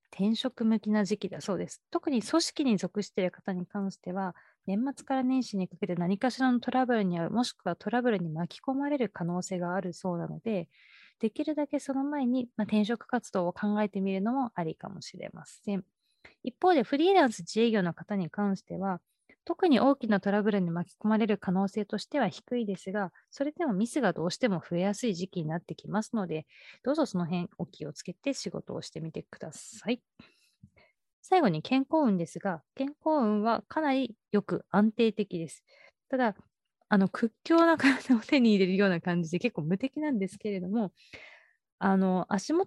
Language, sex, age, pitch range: Japanese, female, 20-39, 185-250 Hz